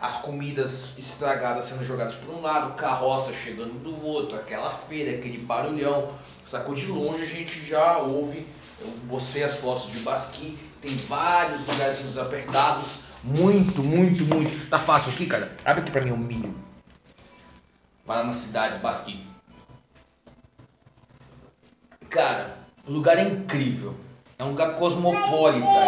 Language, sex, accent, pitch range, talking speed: English, male, Brazilian, 130-175 Hz, 135 wpm